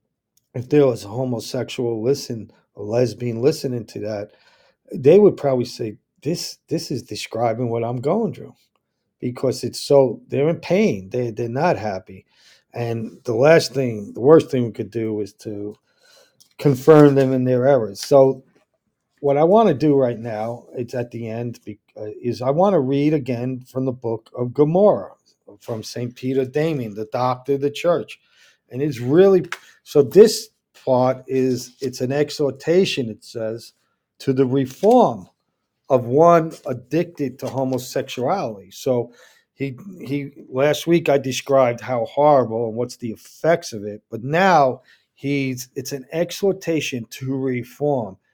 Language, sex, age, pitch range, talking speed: English, male, 40-59, 120-145 Hz, 155 wpm